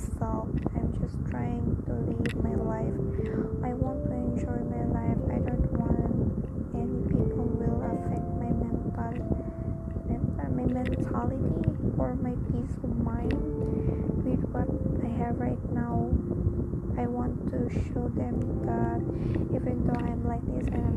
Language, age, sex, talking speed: Filipino, 20-39, female, 140 wpm